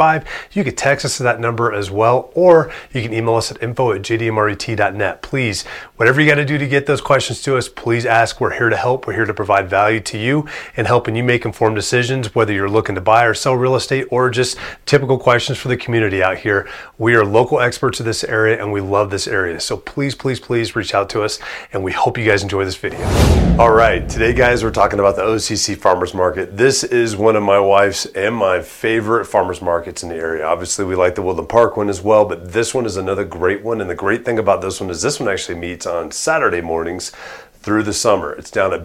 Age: 30-49